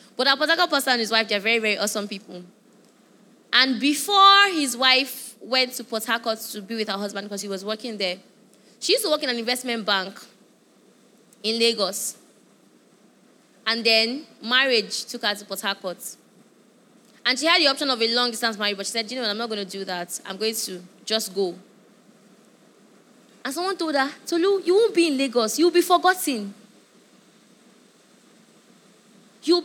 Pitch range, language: 220-320 Hz, English